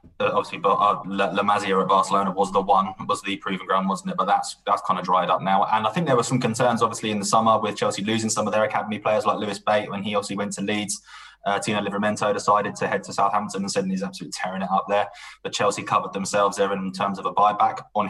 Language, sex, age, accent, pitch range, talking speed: English, male, 20-39, British, 95-110 Hz, 270 wpm